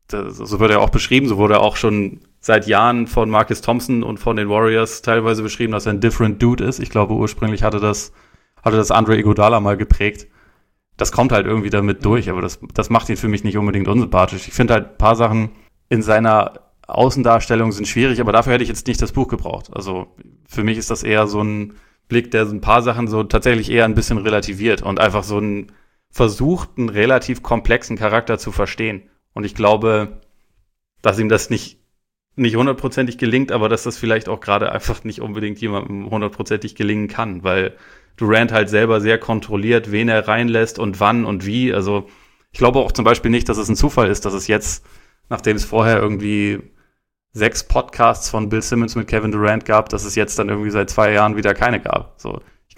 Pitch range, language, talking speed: 105-115 Hz, German, 205 wpm